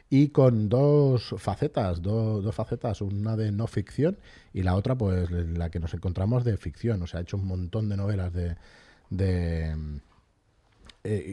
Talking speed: 175 wpm